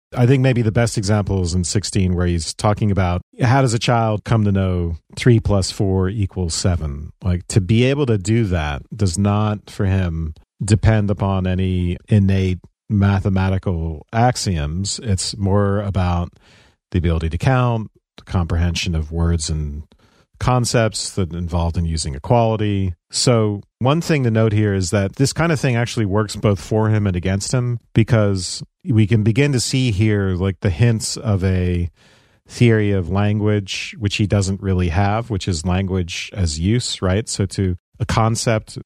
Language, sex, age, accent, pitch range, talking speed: English, male, 40-59, American, 90-110 Hz, 170 wpm